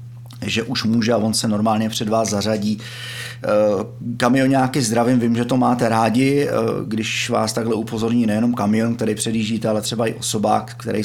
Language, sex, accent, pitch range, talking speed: Czech, male, native, 110-130 Hz, 170 wpm